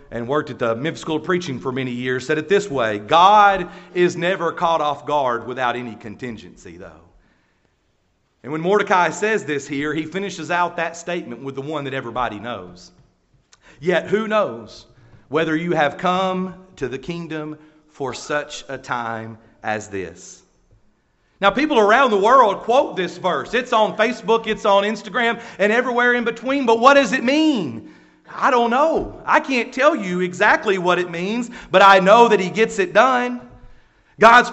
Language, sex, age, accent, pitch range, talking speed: English, male, 40-59, American, 150-215 Hz, 175 wpm